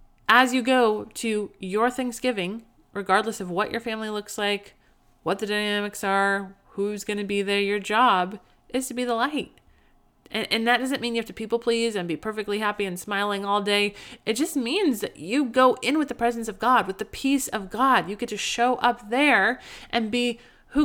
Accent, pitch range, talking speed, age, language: American, 205-255 Hz, 210 wpm, 30-49, English